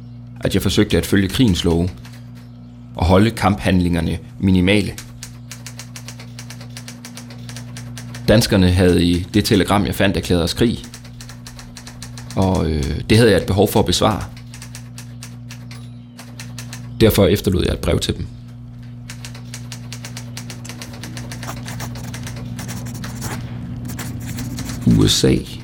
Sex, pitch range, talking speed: male, 95-120 Hz, 90 wpm